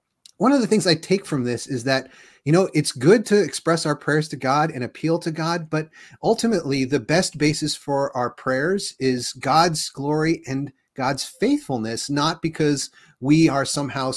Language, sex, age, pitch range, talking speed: English, male, 30-49, 125-155 Hz, 180 wpm